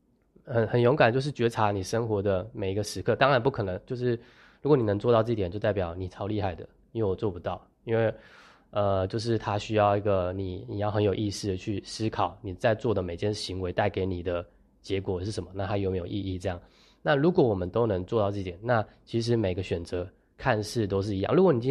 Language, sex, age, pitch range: Chinese, male, 20-39, 95-120 Hz